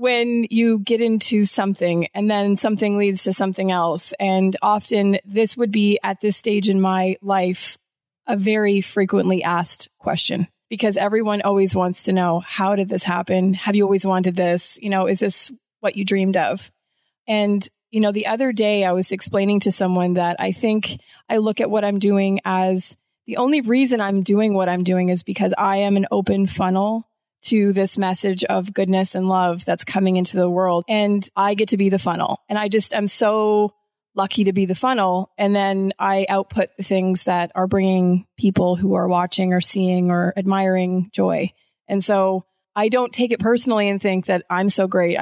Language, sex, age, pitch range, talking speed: English, female, 20-39, 185-210 Hz, 195 wpm